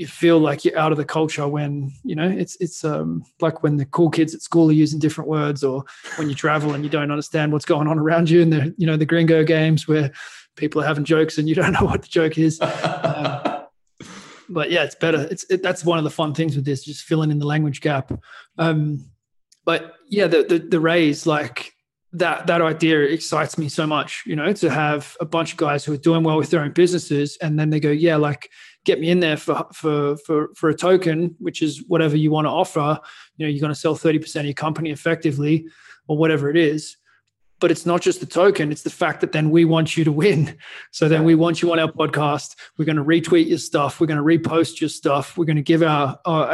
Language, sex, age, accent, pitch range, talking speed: English, male, 20-39, Australian, 150-165 Hz, 245 wpm